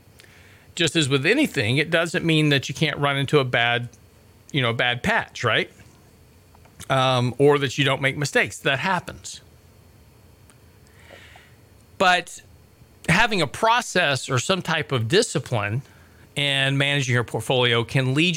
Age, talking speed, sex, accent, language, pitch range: 40-59, 140 wpm, male, American, English, 115-155 Hz